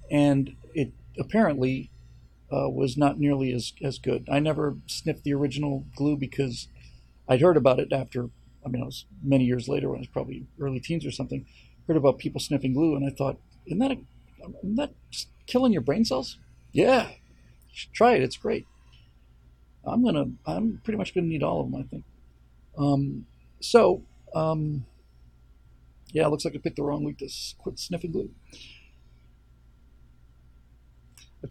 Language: English